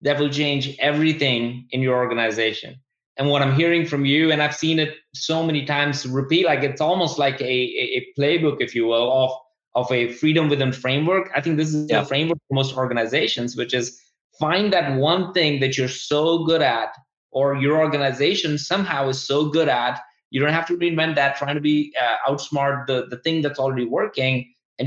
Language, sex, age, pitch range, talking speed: English, male, 20-39, 125-150 Hz, 200 wpm